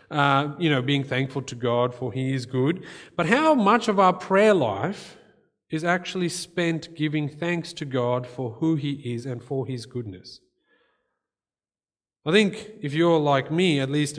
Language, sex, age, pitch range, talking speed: English, male, 30-49, 120-170 Hz, 175 wpm